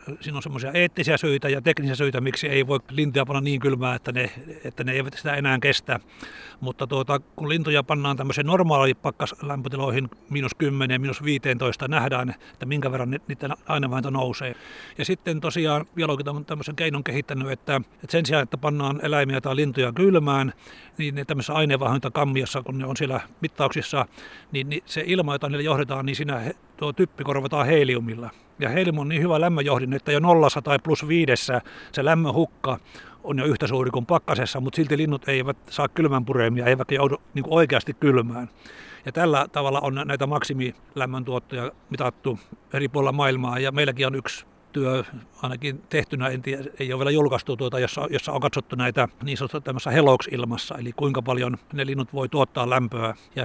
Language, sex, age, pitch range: Finnish, male, 60-79, 130-145 Hz